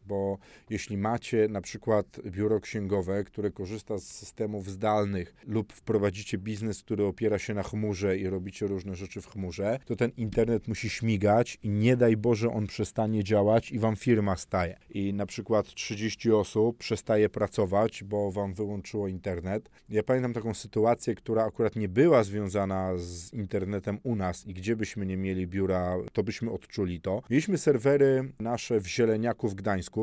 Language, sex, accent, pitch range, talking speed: Polish, male, native, 100-120 Hz, 165 wpm